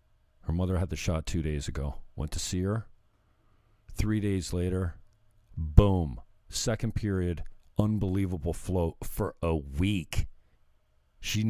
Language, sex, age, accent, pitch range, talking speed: English, male, 50-69, American, 85-115 Hz, 125 wpm